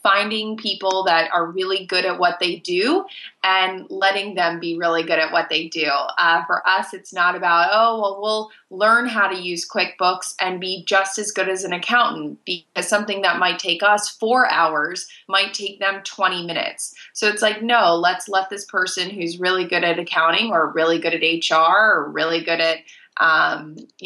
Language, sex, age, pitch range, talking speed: English, female, 20-39, 165-200 Hz, 195 wpm